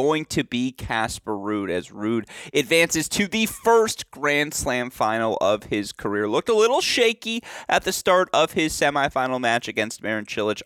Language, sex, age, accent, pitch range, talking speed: English, male, 30-49, American, 110-145 Hz, 175 wpm